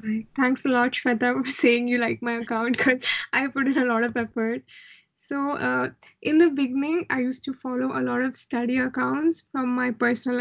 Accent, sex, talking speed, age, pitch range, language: Indian, female, 200 wpm, 20-39, 235-265 Hz, English